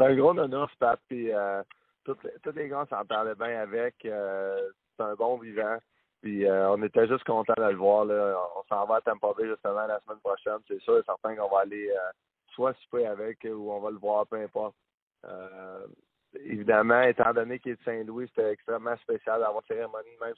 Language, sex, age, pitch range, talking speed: French, male, 20-39, 105-130 Hz, 220 wpm